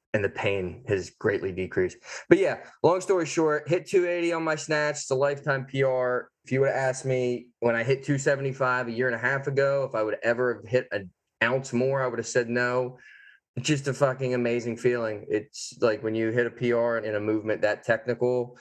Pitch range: 110-135 Hz